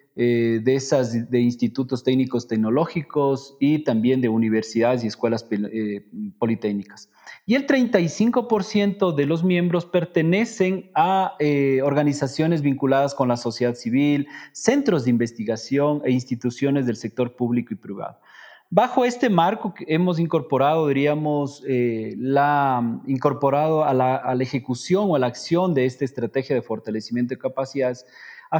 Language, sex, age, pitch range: Spanish, male, 40-59, 125-175 Hz